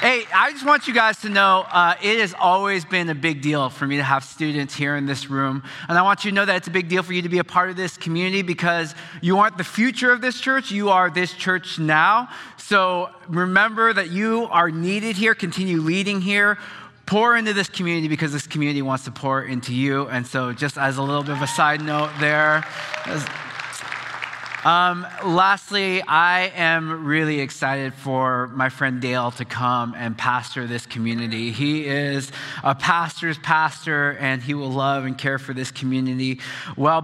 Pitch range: 135-180 Hz